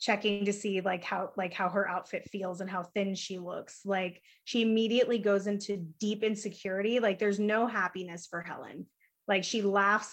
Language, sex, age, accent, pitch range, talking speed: English, female, 20-39, American, 185-210 Hz, 185 wpm